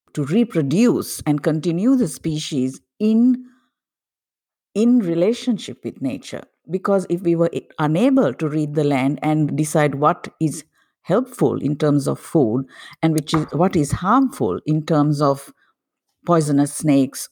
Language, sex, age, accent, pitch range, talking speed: English, female, 50-69, Indian, 145-195 Hz, 140 wpm